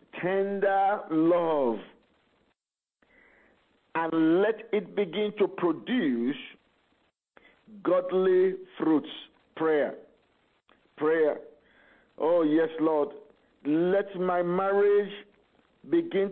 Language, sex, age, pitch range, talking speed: English, male, 50-69, 170-215 Hz, 70 wpm